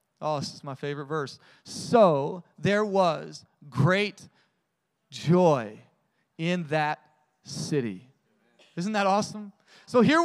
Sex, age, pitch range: male, 30-49, 215-290 Hz